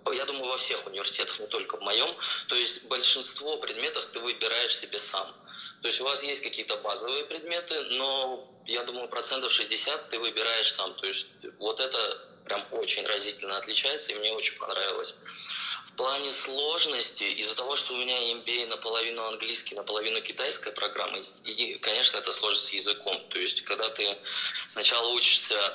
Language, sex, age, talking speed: Russian, male, 20-39, 165 wpm